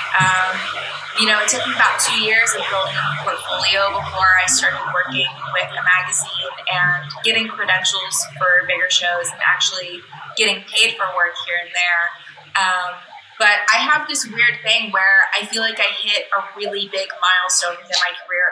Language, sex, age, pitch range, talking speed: English, female, 20-39, 180-205 Hz, 180 wpm